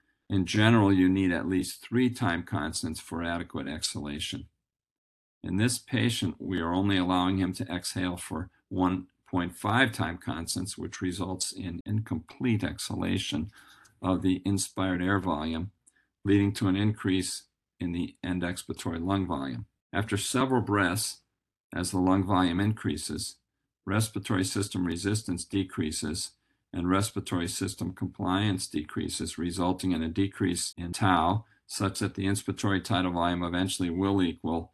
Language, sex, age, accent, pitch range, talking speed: English, male, 50-69, American, 90-100 Hz, 135 wpm